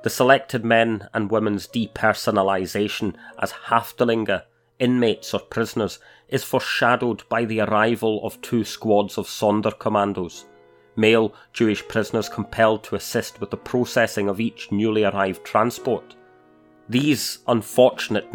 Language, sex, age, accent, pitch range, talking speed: English, male, 30-49, British, 105-120 Hz, 120 wpm